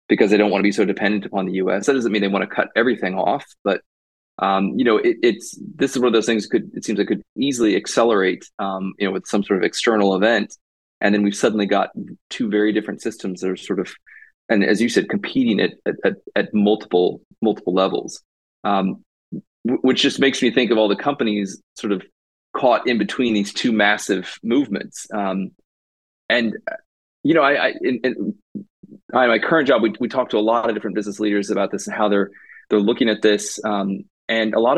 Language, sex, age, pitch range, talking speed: English, male, 20-39, 100-120 Hz, 215 wpm